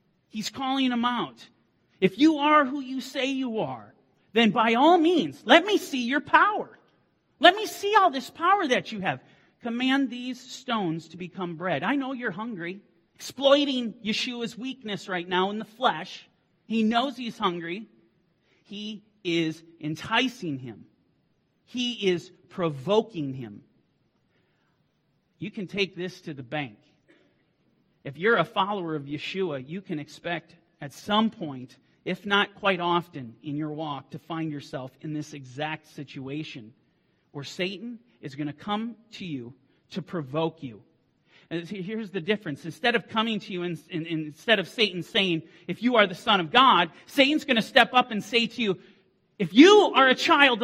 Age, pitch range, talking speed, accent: 40-59, 160-240 Hz, 165 wpm, American